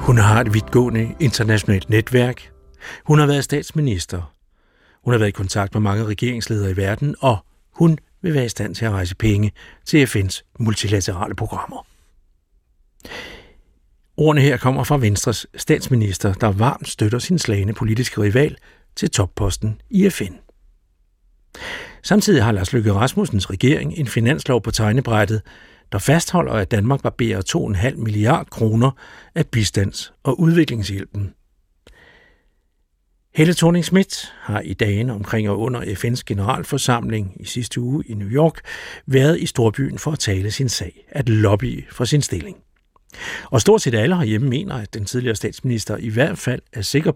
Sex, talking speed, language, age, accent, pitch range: male, 150 wpm, Danish, 60-79, native, 100-135 Hz